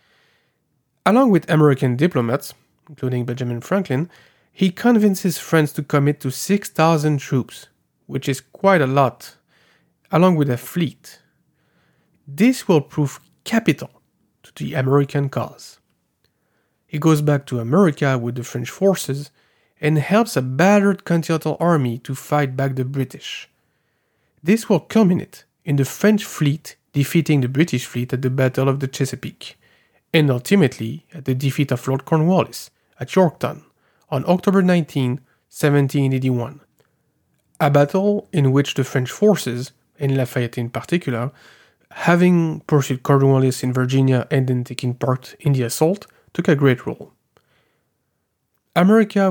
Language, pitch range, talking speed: English, 130-170 Hz, 135 wpm